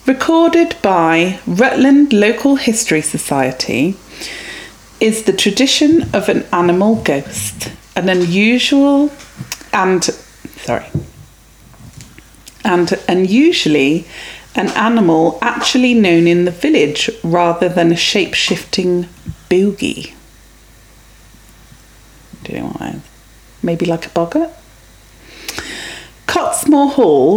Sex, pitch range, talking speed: female, 175-260 Hz, 80 wpm